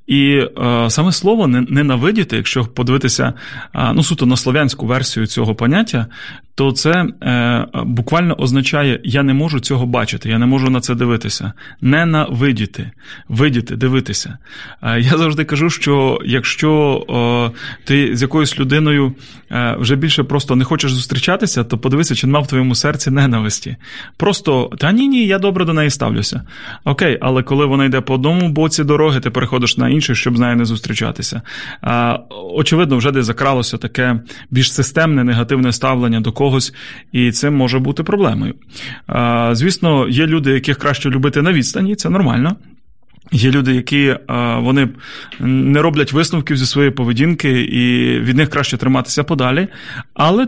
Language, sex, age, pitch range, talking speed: Ukrainian, male, 30-49, 125-150 Hz, 145 wpm